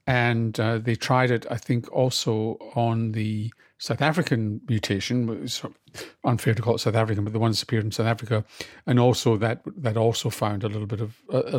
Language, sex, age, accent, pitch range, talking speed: English, male, 50-69, British, 110-130 Hz, 200 wpm